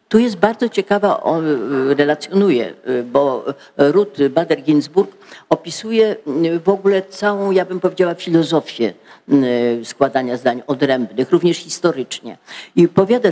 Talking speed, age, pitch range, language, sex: 115 wpm, 50-69, 150-205 Hz, Polish, female